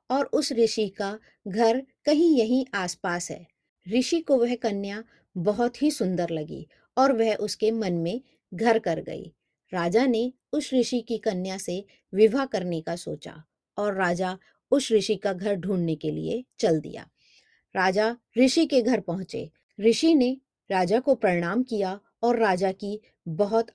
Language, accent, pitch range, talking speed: Hindi, native, 185-245 Hz, 155 wpm